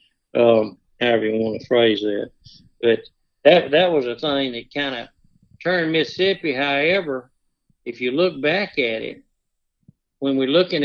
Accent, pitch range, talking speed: American, 115-145 Hz, 155 wpm